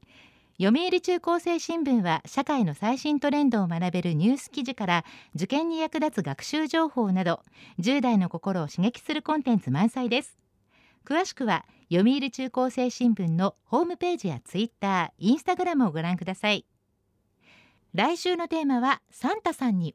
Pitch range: 190-290 Hz